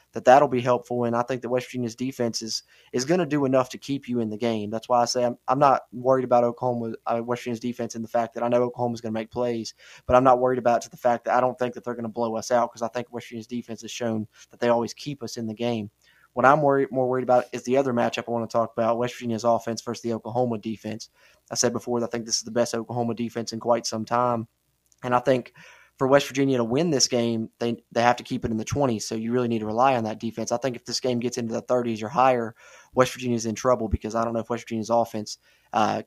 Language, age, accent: English, 20-39, American